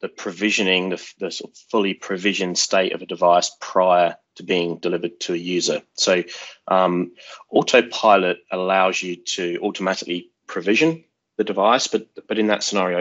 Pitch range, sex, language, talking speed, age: 90-100 Hz, male, English, 155 wpm, 30-49